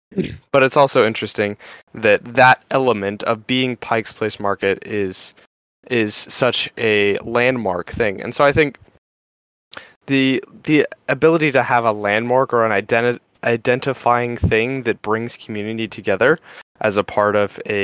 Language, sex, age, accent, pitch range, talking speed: English, male, 10-29, American, 100-125 Hz, 145 wpm